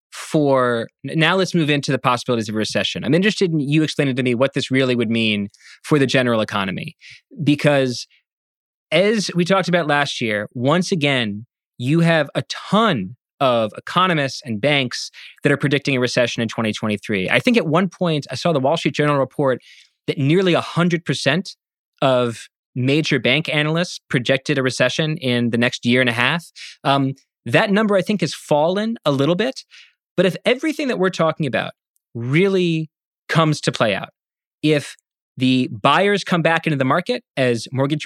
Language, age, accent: English, 20-39, American